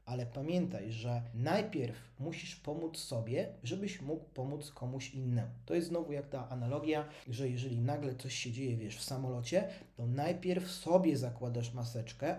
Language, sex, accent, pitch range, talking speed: Polish, male, native, 125-160 Hz, 150 wpm